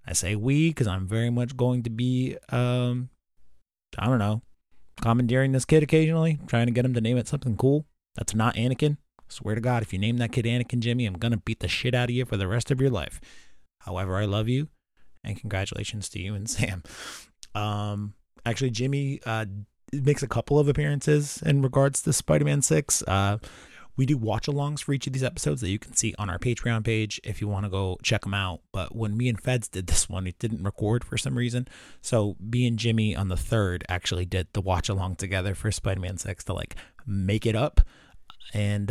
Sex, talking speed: male, 215 wpm